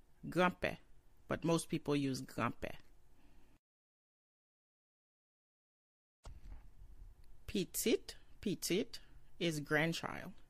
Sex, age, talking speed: female, 30-49, 55 wpm